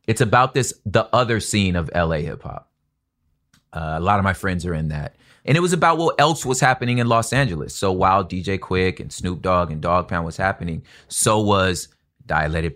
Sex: male